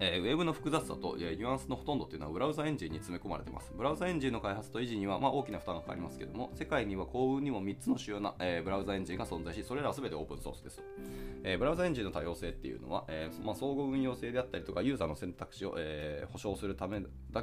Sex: male